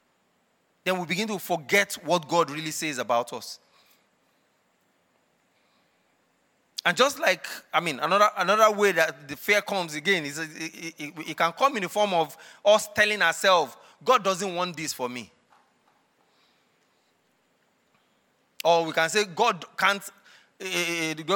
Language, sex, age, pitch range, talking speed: English, male, 30-49, 150-195 Hz, 145 wpm